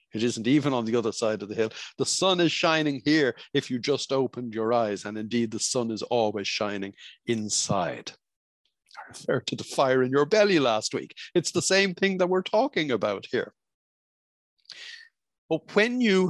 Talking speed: 190 wpm